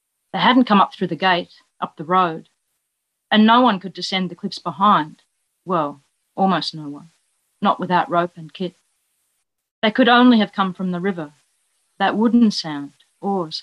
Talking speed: 170 wpm